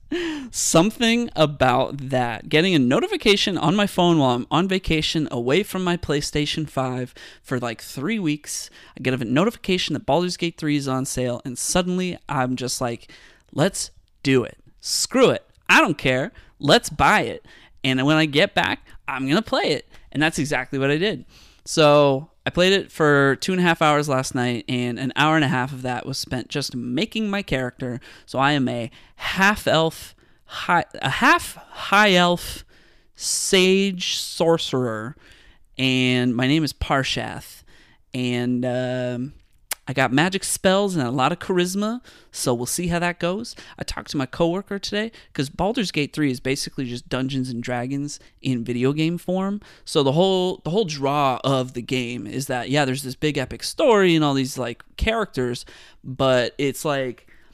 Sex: male